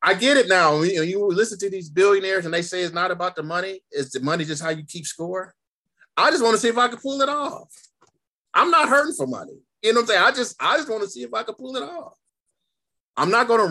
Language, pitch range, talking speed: English, 130-175 Hz, 265 wpm